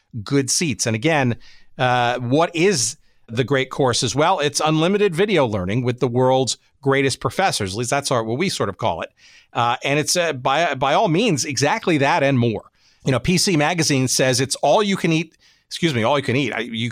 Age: 50-69